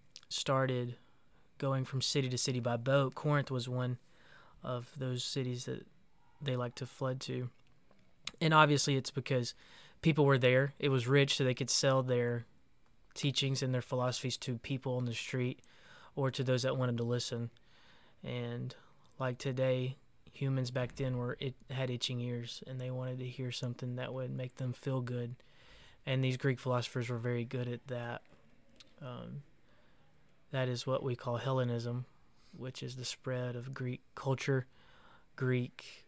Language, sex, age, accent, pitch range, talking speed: English, male, 20-39, American, 125-135 Hz, 165 wpm